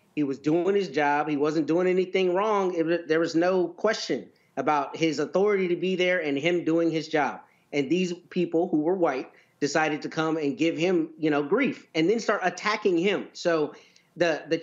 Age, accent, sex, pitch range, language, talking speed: 30-49, American, male, 145-175 Hz, English, 205 wpm